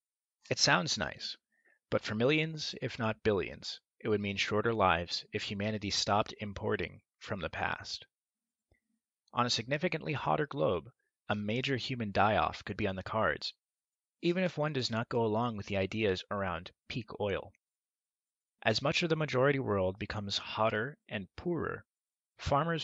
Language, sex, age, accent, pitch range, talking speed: English, male, 30-49, American, 105-135 Hz, 155 wpm